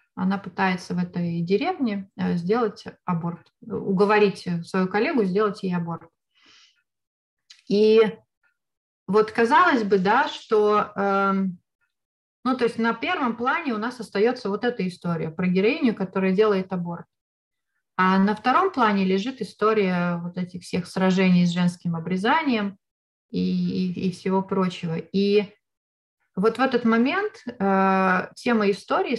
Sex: female